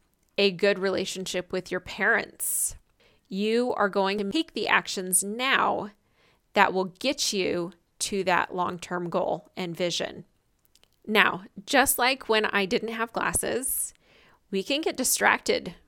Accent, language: American, English